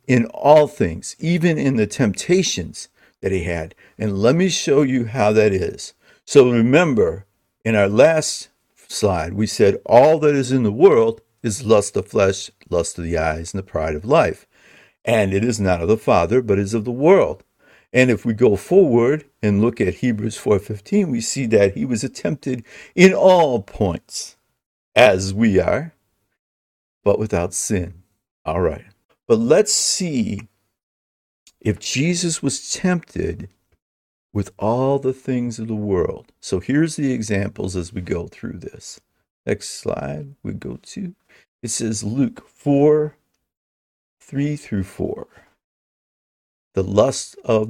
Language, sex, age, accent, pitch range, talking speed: English, male, 50-69, American, 100-140 Hz, 155 wpm